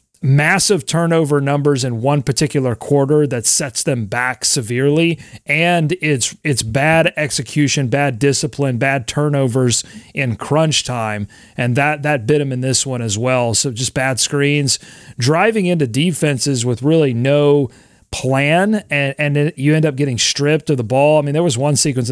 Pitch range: 130-165 Hz